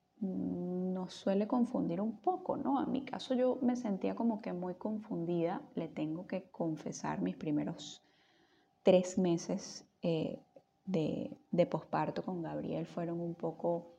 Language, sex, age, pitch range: Spanish, female, 10-29, 165-230 Hz